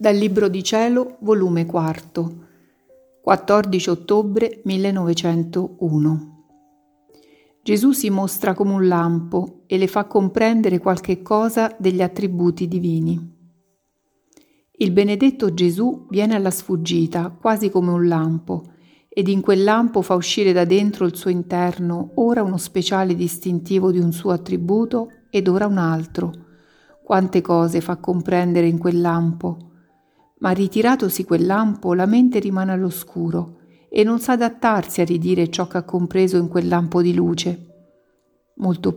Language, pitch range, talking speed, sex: Italian, 170-205 Hz, 135 wpm, female